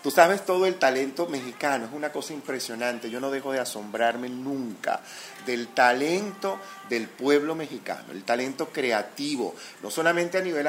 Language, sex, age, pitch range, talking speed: Spanish, male, 30-49, 115-160 Hz, 155 wpm